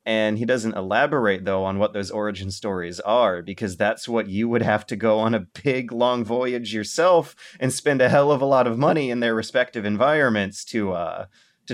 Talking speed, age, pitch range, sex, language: 210 wpm, 30-49, 95-115 Hz, male, English